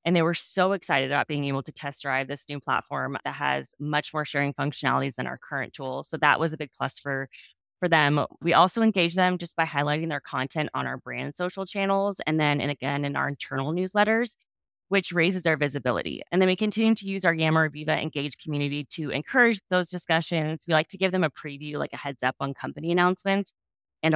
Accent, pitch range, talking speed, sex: American, 150-190 Hz, 220 wpm, female